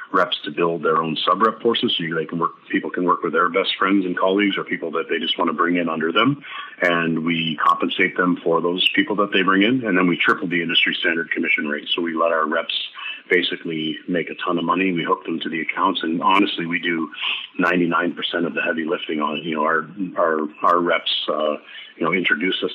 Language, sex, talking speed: English, male, 240 wpm